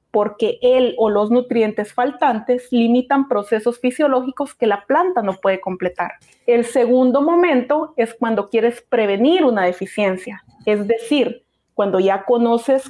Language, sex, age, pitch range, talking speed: Spanish, female, 30-49, 210-280 Hz, 135 wpm